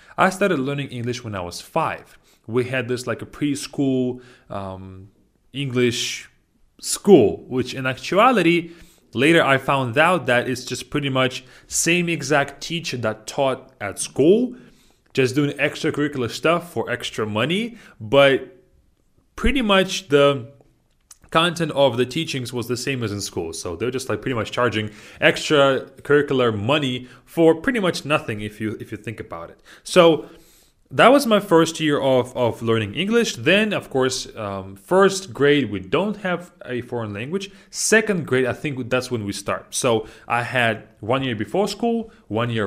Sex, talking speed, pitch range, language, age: male, 165 wpm, 115-155 Hz, English, 30-49